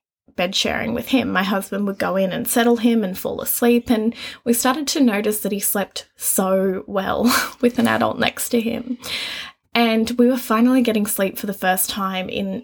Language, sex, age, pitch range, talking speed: English, female, 20-39, 200-250 Hz, 200 wpm